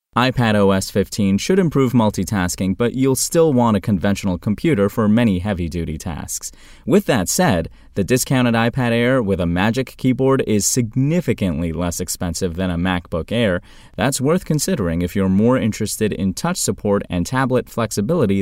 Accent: American